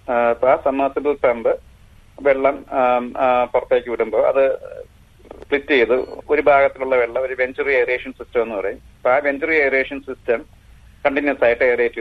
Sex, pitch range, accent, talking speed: male, 125-175 Hz, native, 120 wpm